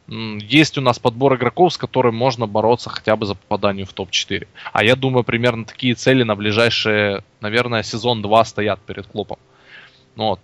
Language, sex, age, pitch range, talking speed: Russian, male, 20-39, 105-125 Hz, 170 wpm